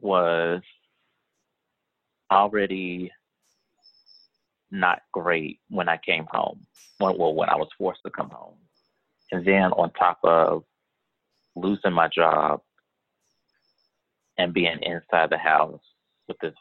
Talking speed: 110 wpm